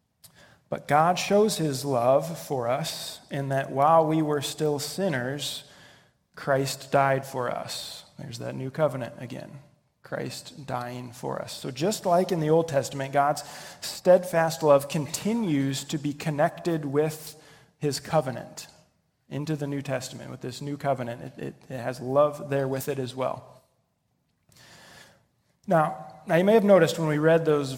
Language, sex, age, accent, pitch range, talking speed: English, male, 30-49, American, 130-155 Hz, 155 wpm